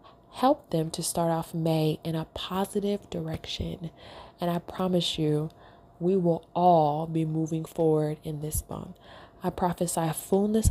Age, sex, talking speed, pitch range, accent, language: 20-39, female, 145 wpm, 150-175 Hz, American, English